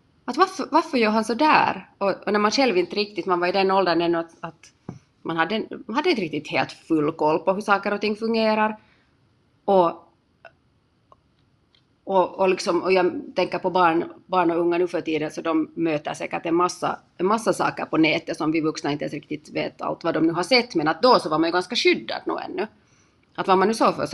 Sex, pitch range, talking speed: female, 165-200 Hz, 230 wpm